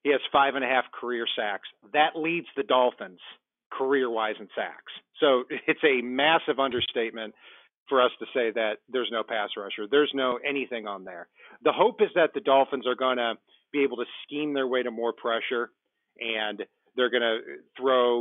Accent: American